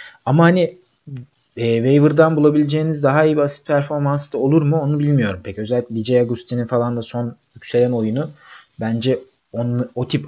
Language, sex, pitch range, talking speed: Turkish, male, 120-150 Hz, 165 wpm